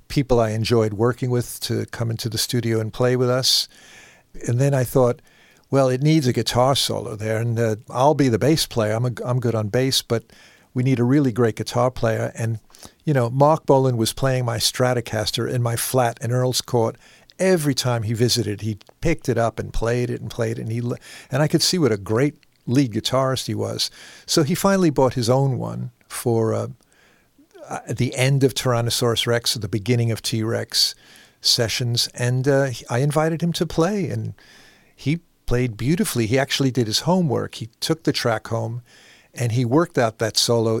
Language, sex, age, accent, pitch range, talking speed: English, male, 50-69, American, 115-135 Hz, 200 wpm